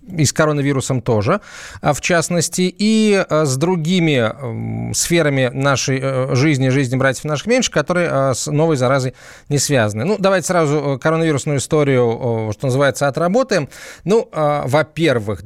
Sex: male